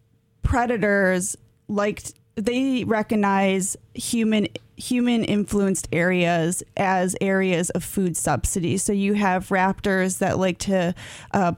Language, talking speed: English, 110 wpm